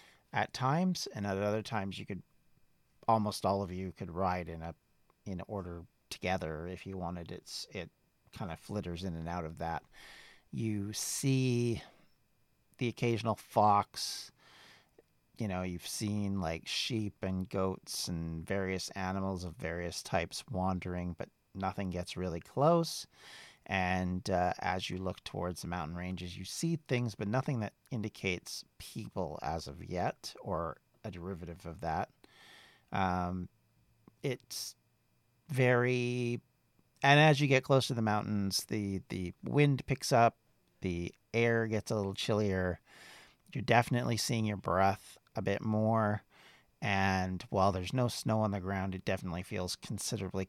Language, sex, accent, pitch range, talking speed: English, male, American, 90-110 Hz, 145 wpm